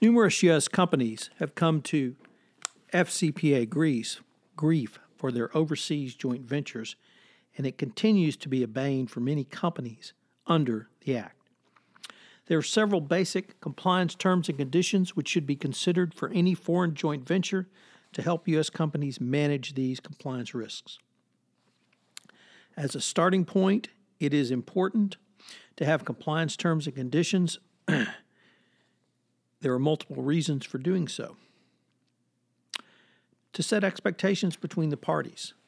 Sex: male